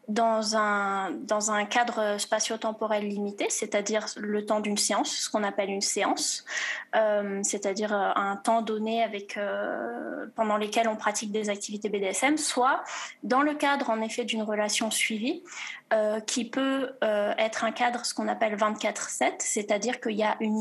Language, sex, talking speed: French, female, 165 wpm